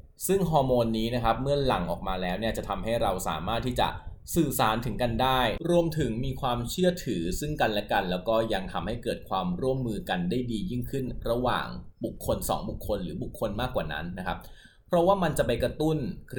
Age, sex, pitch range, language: 20-39, male, 105-145 Hz, Thai